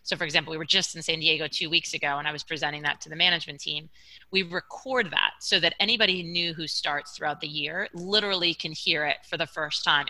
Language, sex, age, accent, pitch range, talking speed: English, female, 30-49, American, 150-180 Hz, 245 wpm